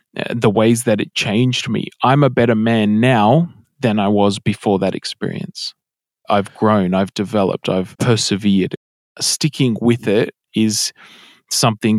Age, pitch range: 20-39, 105-130 Hz